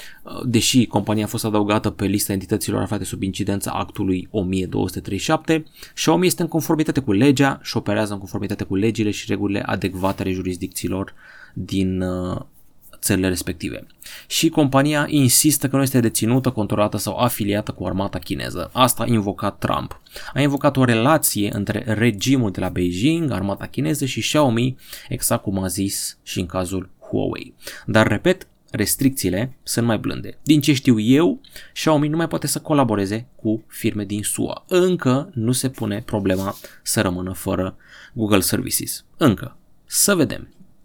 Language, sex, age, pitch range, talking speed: Romanian, male, 20-39, 100-135 Hz, 150 wpm